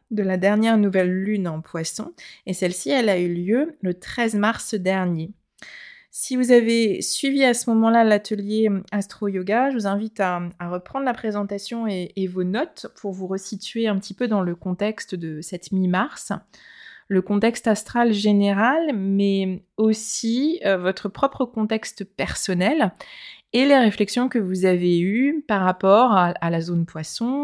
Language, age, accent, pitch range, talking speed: French, 20-39, French, 190-230 Hz, 165 wpm